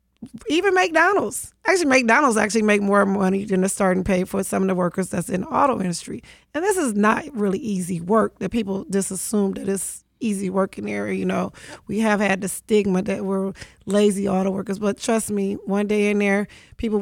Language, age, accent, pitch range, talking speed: English, 40-59, American, 195-230 Hz, 210 wpm